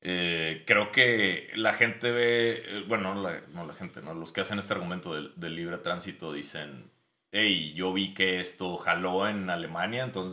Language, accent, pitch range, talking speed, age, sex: Spanish, Mexican, 85-120 Hz, 180 wpm, 30-49, male